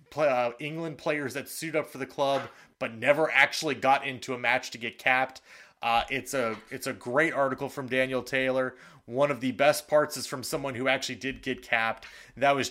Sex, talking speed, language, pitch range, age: male, 210 wpm, English, 130-160 Hz, 30-49